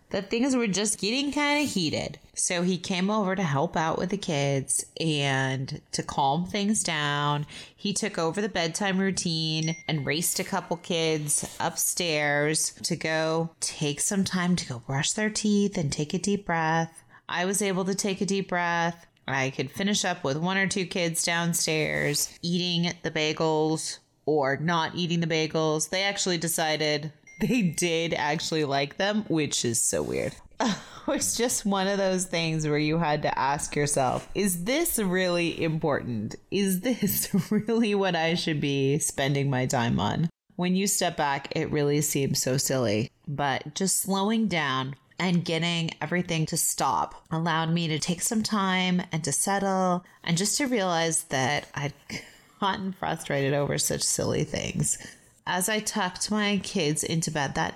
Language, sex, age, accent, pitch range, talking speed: English, female, 30-49, American, 145-190 Hz, 170 wpm